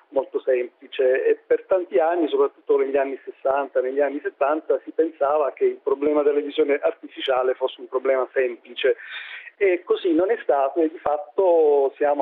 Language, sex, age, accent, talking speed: Italian, male, 40-59, native, 165 wpm